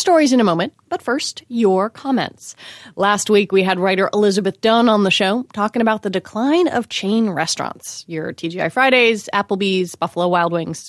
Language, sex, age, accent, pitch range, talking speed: English, female, 20-39, American, 190-250 Hz, 175 wpm